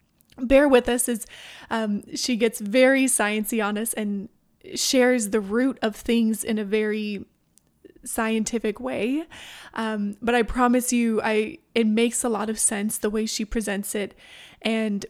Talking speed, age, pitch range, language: 160 wpm, 20-39, 215-240 Hz, English